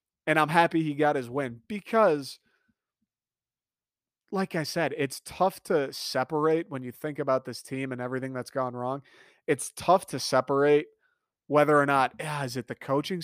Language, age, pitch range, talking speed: English, 30-49, 135-160 Hz, 170 wpm